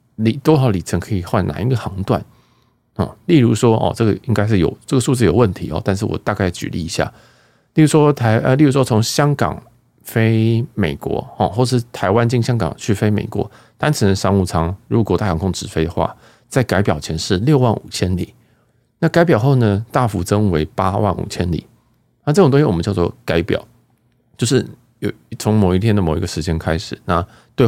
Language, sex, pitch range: Chinese, male, 90-120 Hz